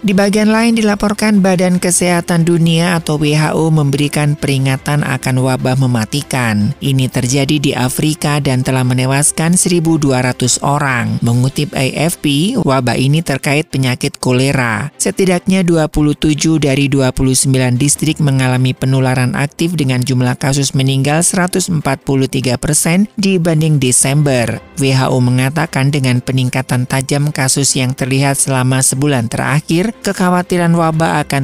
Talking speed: 115 wpm